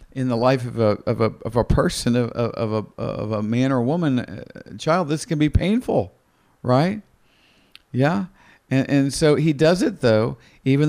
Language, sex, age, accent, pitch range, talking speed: English, male, 50-69, American, 130-180 Hz, 180 wpm